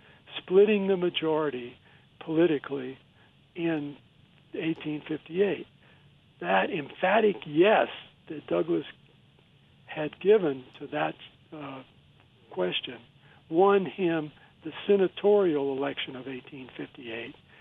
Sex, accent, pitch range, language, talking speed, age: male, American, 140-185 Hz, English, 80 wpm, 60-79